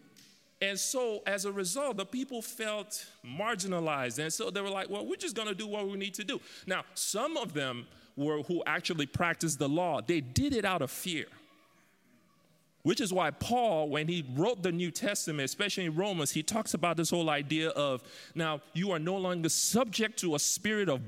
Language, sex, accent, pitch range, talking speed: English, male, American, 150-205 Hz, 200 wpm